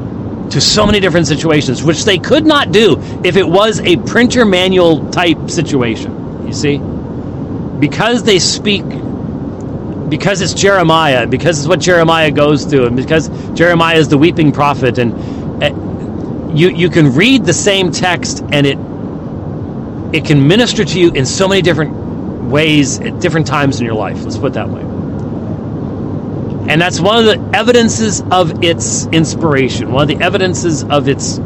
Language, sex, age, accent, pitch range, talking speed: English, male, 40-59, American, 135-195 Hz, 160 wpm